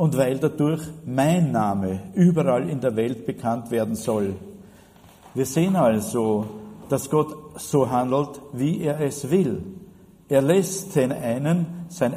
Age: 50-69